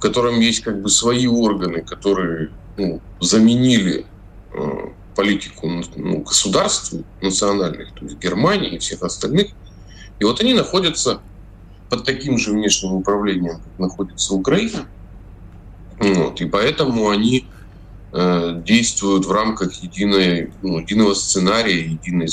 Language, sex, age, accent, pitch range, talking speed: Russian, male, 20-39, native, 90-105 Hz, 125 wpm